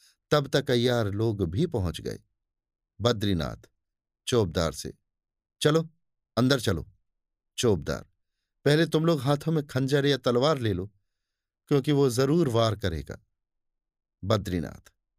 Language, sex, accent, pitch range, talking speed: Hindi, male, native, 95-145 Hz, 120 wpm